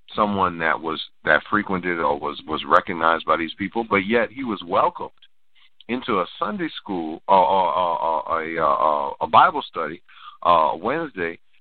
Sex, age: male, 50-69